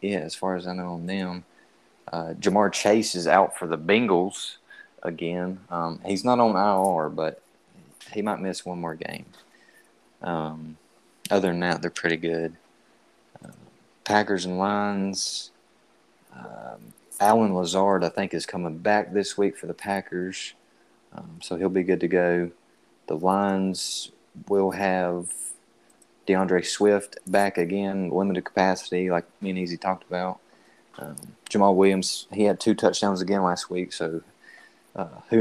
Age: 30-49